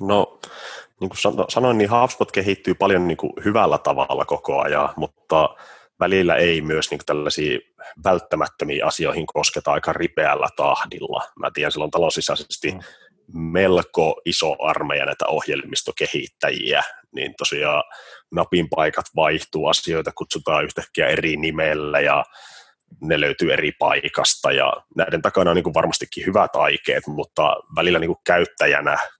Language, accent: Finnish, native